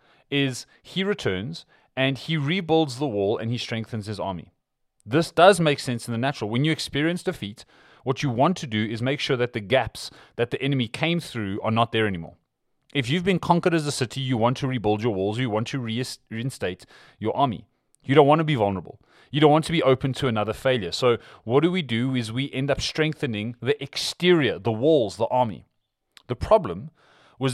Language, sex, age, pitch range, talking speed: English, male, 30-49, 115-150 Hz, 210 wpm